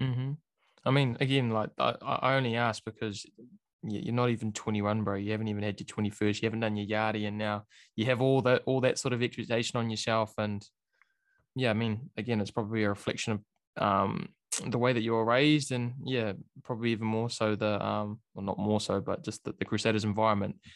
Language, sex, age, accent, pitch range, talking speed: English, male, 20-39, Australian, 105-125 Hz, 215 wpm